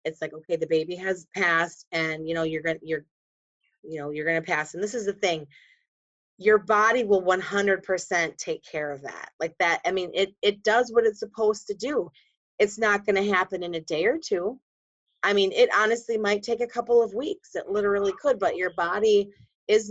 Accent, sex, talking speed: American, female, 210 wpm